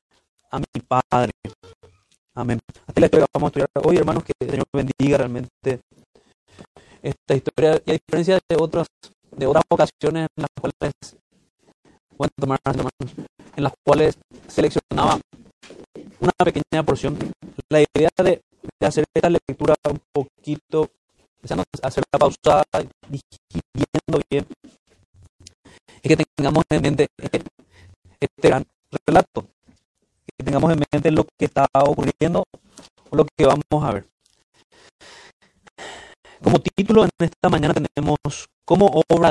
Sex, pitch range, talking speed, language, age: male, 135-155 Hz, 130 wpm, Spanish, 30-49